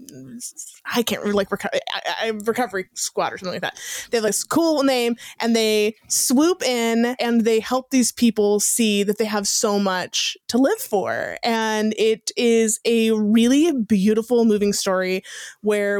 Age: 20-39